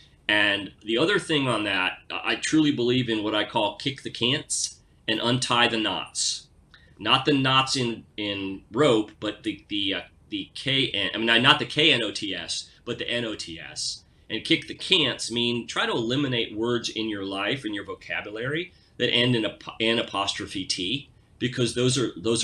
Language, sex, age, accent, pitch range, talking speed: English, male, 30-49, American, 110-145 Hz, 175 wpm